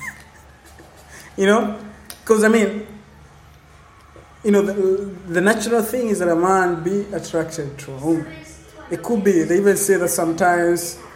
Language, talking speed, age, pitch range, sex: English, 150 wpm, 20-39, 155-180 Hz, male